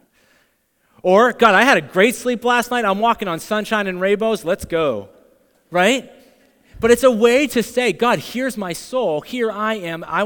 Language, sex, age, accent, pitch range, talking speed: English, male, 30-49, American, 160-220 Hz, 185 wpm